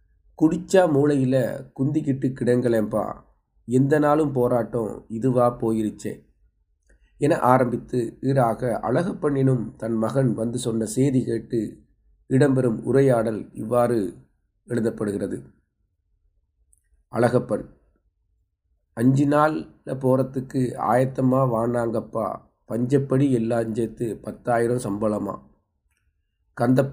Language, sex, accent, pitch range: Tamil, male, native, 105-130 Hz